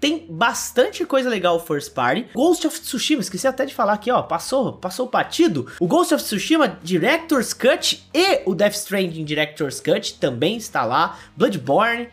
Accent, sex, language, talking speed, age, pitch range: Brazilian, male, Portuguese, 170 wpm, 20-39, 170-255 Hz